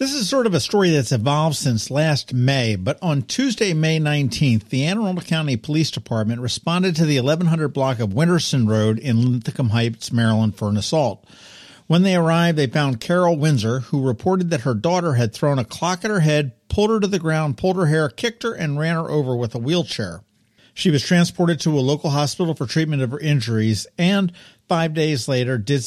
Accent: American